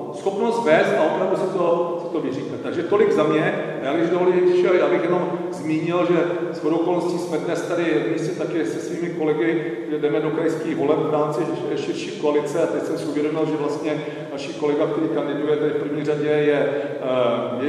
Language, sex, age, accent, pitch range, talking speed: Czech, male, 40-59, native, 130-160 Hz, 185 wpm